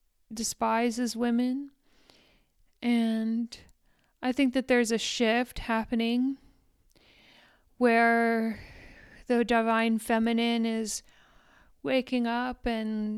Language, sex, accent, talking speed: English, female, American, 80 wpm